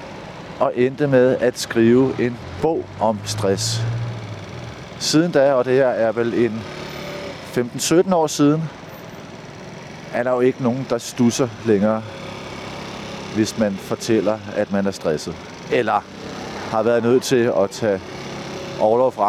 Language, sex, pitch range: Danish, male, 110-150 Hz